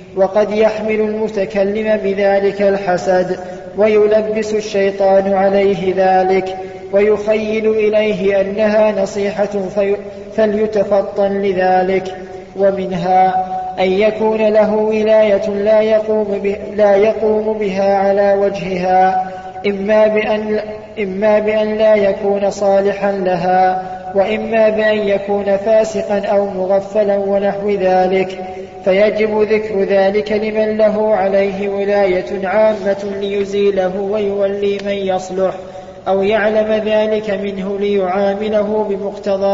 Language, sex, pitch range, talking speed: Arabic, male, 190-215 Hz, 90 wpm